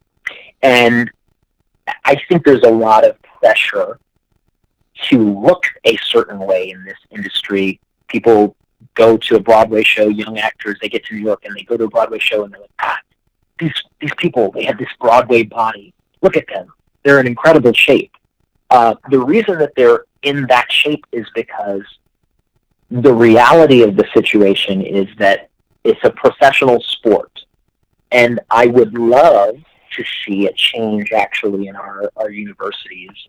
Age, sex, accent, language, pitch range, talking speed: 40-59, male, American, English, 105-135 Hz, 160 wpm